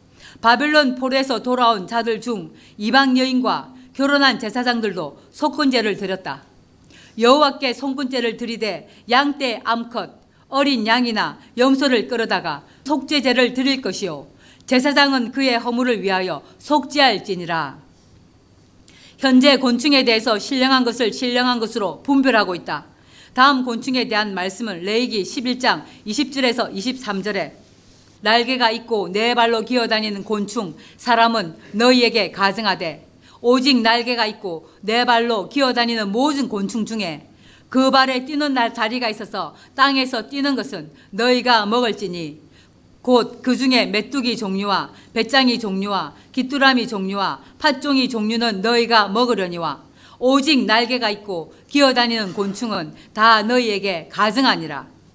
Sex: female